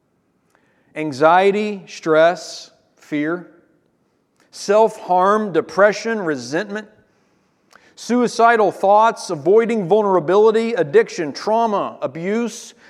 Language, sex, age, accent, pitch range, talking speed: English, male, 40-59, American, 185-225 Hz, 65 wpm